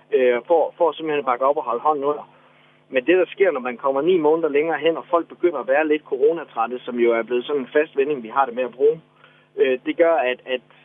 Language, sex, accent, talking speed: Danish, male, native, 255 wpm